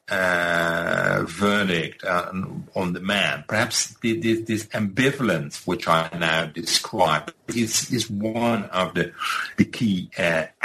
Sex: male